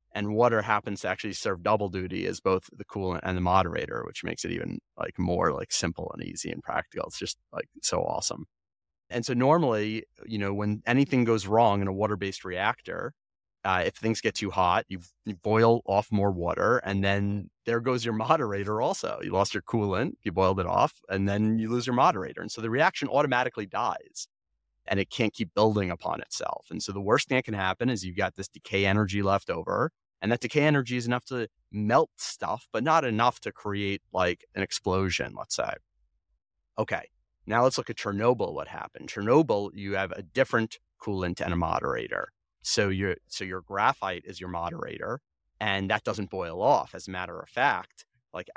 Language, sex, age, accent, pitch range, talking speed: English, male, 30-49, American, 95-115 Hz, 200 wpm